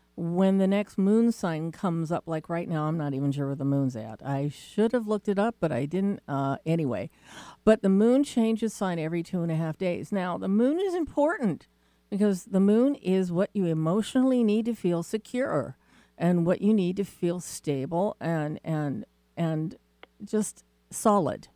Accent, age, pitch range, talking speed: American, 50-69, 160-215 Hz, 190 wpm